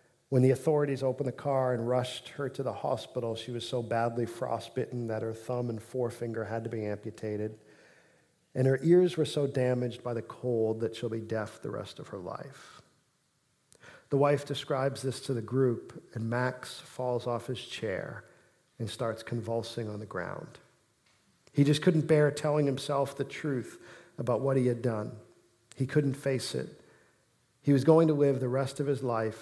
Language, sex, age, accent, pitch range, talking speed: English, male, 50-69, American, 115-140 Hz, 185 wpm